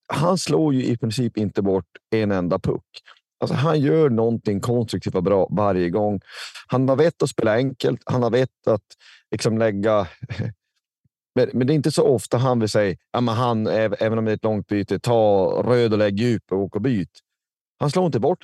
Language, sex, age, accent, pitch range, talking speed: Swedish, male, 30-49, native, 100-125 Hz, 200 wpm